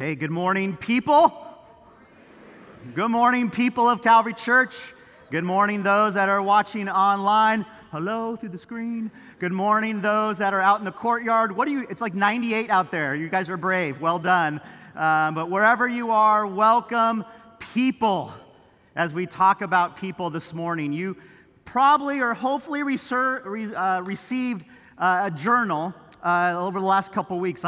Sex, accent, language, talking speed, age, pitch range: male, American, English, 160 wpm, 30-49, 170-220 Hz